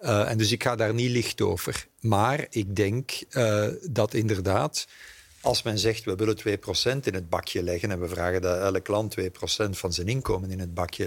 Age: 50-69